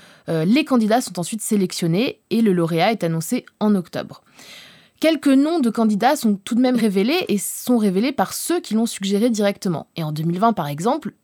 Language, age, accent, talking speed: French, 20-39, French, 190 wpm